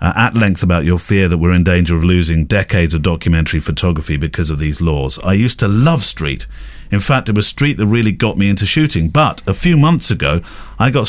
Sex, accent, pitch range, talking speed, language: male, British, 90-125 Hz, 235 wpm, English